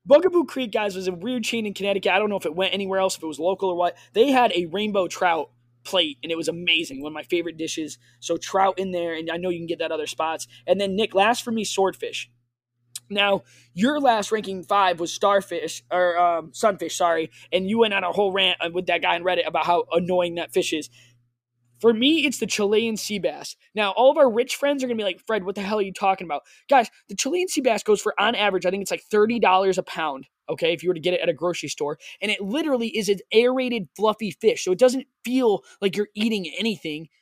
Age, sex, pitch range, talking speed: 20-39, male, 170-225 Hz, 250 wpm